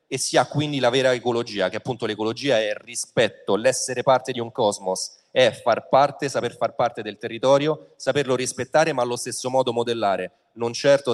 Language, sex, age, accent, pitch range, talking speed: Italian, male, 30-49, native, 105-125 Hz, 190 wpm